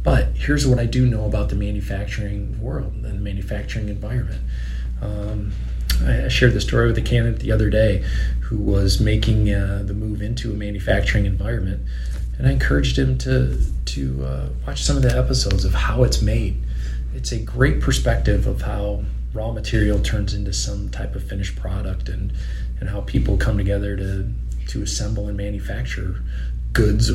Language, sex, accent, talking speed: English, male, American, 170 wpm